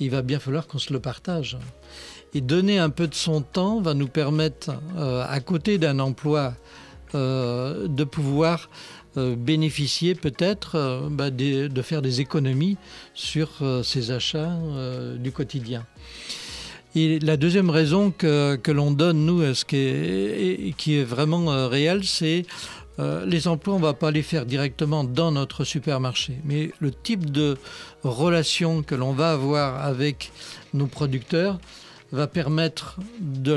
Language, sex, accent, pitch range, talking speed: French, male, French, 135-165 Hz, 155 wpm